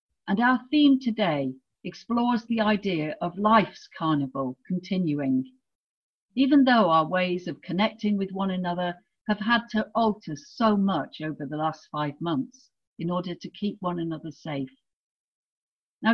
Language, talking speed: English, 145 wpm